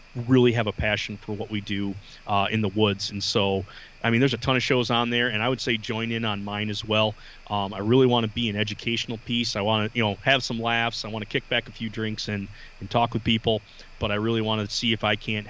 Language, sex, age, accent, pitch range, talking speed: English, male, 30-49, American, 105-120 Hz, 280 wpm